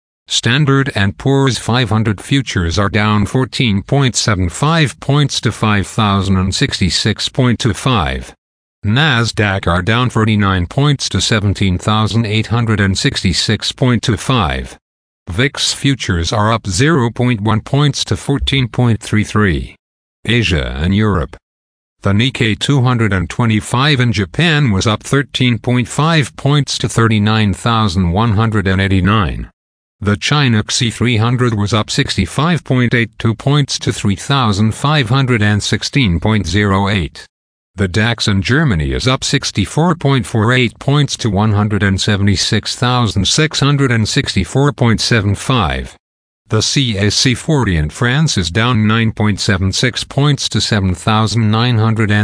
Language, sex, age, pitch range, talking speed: English, male, 50-69, 100-125 Hz, 80 wpm